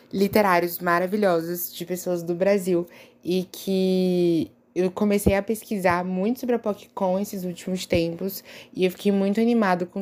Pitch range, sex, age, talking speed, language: 180-210 Hz, female, 20-39, 150 wpm, Portuguese